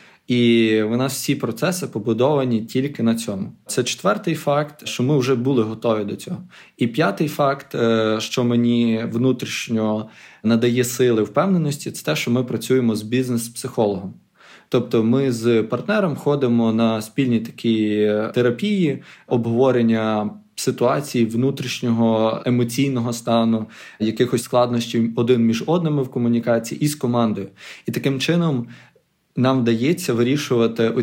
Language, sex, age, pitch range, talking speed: Ukrainian, male, 20-39, 115-135 Hz, 125 wpm